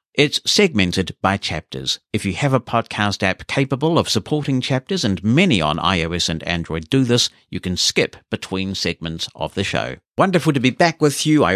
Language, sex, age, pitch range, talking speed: English, male, 60-79, 85-105 Hz, 190 wpm